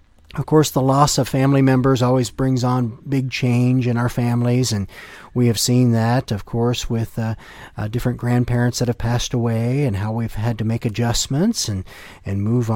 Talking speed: 195 wpm